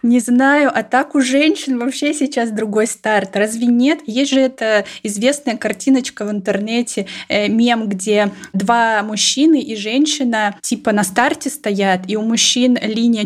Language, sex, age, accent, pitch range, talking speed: Russian, female, 20-39, native, 195-235 Hz, 155 wpm